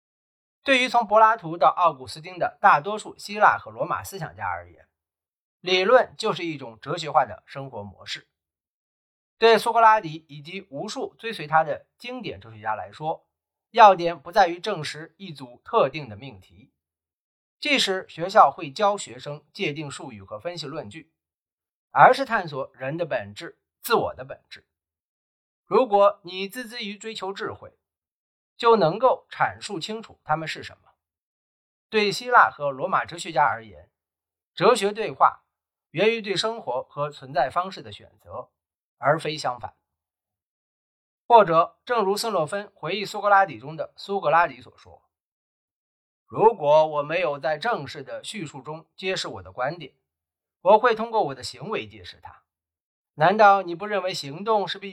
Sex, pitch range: male, 130-205 Hz